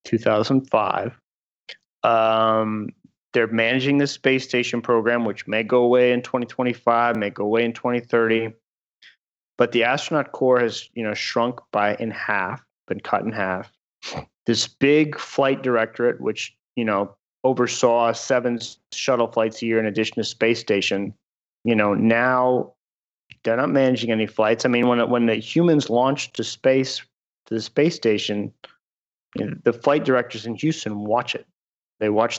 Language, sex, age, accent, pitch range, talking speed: English, male, 30-49, American, 110-130 Hz, 170 wpm